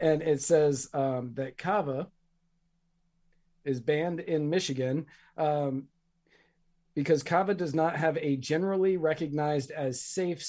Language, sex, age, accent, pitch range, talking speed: English, male, 40-59, American, 140-170 Hz, 120 wpm